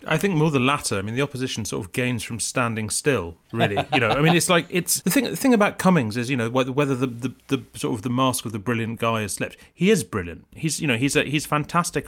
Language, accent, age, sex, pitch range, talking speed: English, British, 30-49, male, 115-145 Hz, 280 wpm